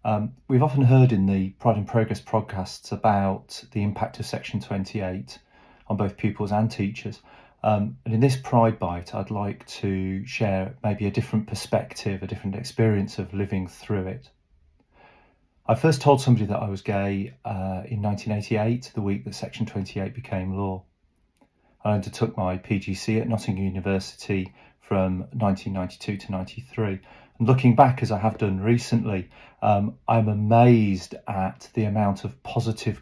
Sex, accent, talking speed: male, British, 155 wpm